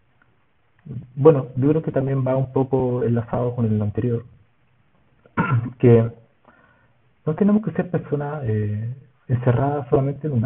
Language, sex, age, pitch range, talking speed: Spanish, male, 40-59, 110-135 Hz, 130 wpm